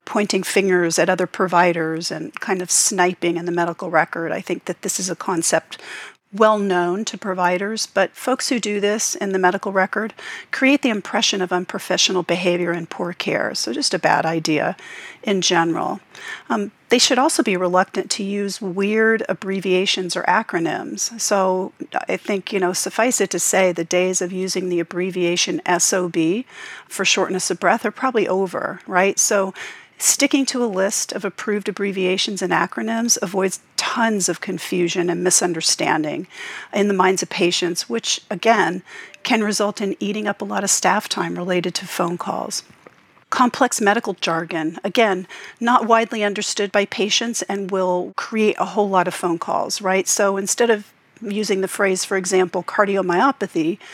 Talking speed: 165 wpm